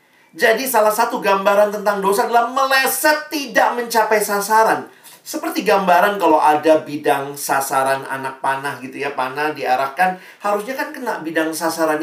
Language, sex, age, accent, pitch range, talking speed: Indonesian, male, 40-59, native, 165-245 Hz, 140 wpm